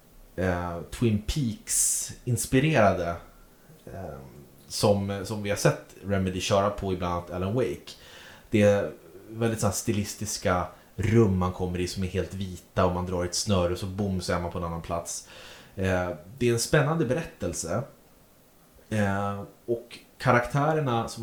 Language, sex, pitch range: Swedish, male, 95-125 Hz